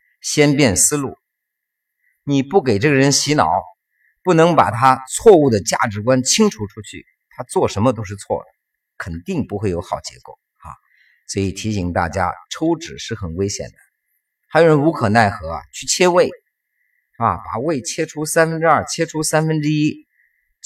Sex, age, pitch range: male, 50-69, 95-145 Hz